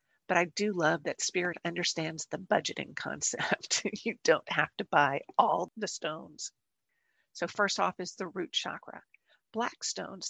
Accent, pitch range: American, 175-210 Hz